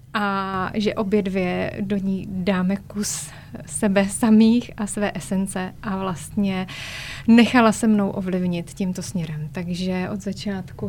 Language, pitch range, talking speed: Czech, 185-210 Hz, 130 wpm